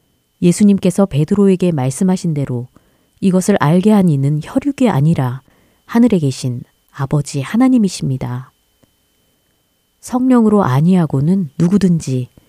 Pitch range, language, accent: 135-195 Hz, Korean, native